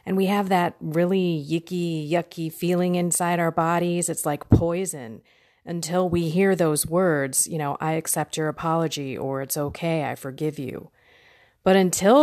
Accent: American